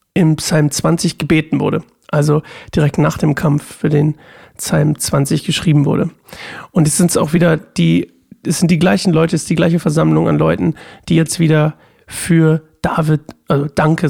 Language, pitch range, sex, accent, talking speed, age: German, 155-180 Hz, male, German, 175 wpm, 40-59